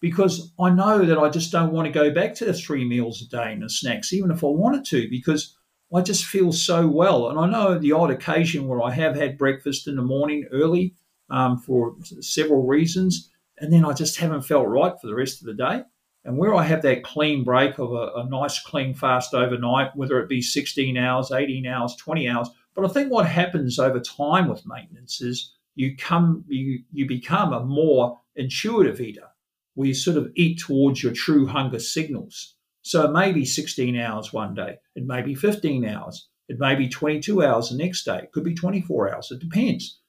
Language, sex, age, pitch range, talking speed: English, male, 50-69, 130-170 Hz, 215 wpm